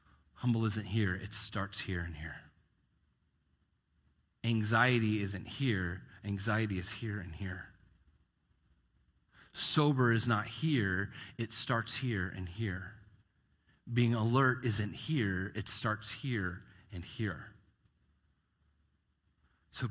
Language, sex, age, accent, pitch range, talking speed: English, male, 40-59, American, 95-135 Hz, 105 wpm